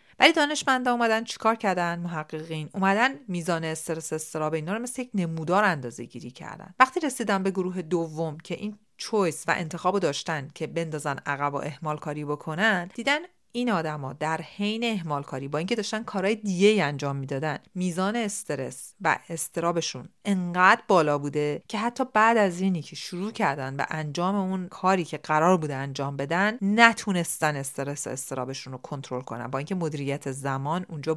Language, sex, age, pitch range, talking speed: Persian, female, 40-59, 150-200 Hz, 165 wpm